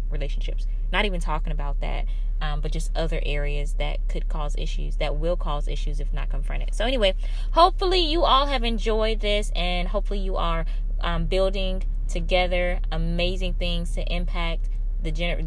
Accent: American